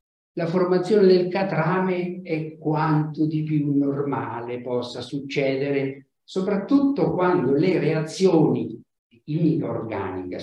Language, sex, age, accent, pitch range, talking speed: Italian, male, 50-69, native, 120-195 Hz, 100 wpm